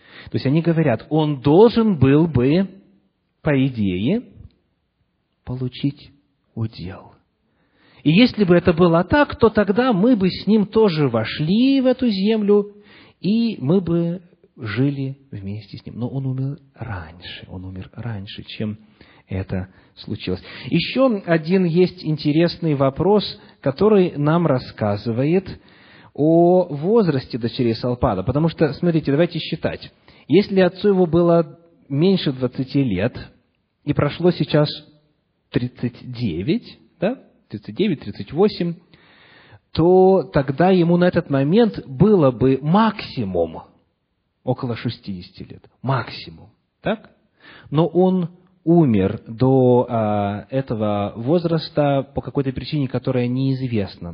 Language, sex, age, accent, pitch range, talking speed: Russian, male, 40-59, native, 125-180 Hz, 115 wpm